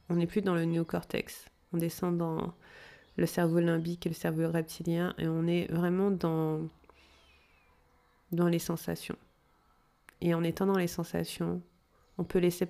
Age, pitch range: 30-49, 165-195 Hz